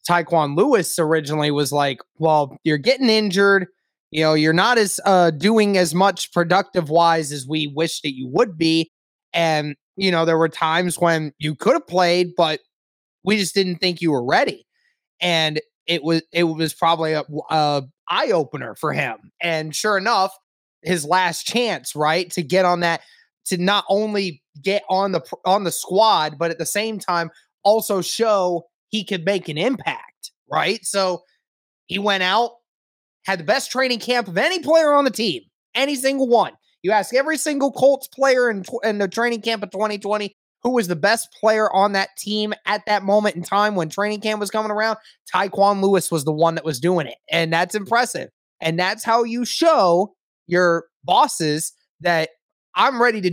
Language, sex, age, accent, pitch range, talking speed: English, male, 20-39, American, 165-215 Hz, 185 wpm